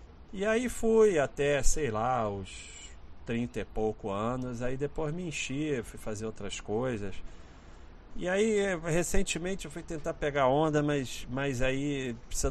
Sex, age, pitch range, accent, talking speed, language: male, 40-59, 100-135 Hz, Brazilian, 150 wpm, Portuguese